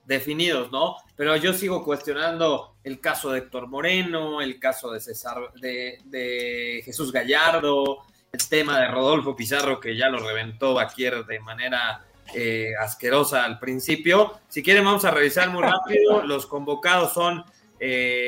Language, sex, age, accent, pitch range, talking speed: Spanish, male, 30-49, Mexican, 130-185 Hz, 150 wpm